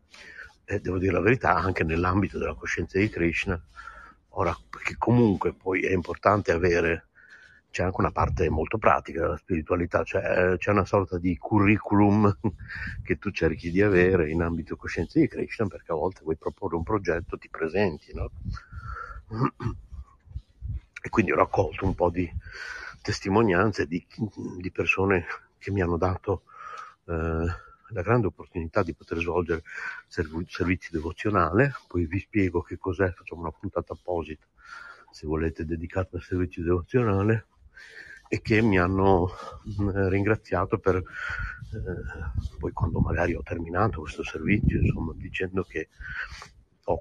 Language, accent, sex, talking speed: Italian, native, male, 140 wpm